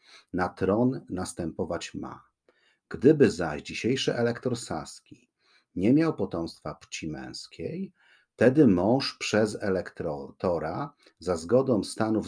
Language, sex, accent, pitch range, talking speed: Polish, male, native, 90-120 Hz, 105 wpm